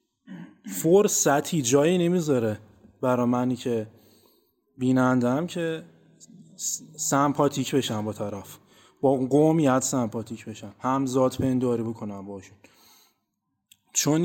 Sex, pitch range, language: male, 120-185 Hz, Persian